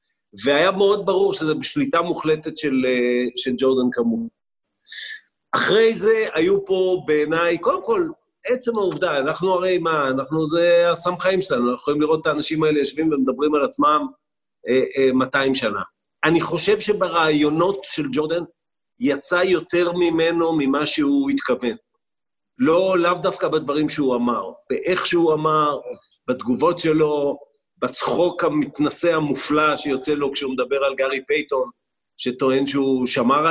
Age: 50-69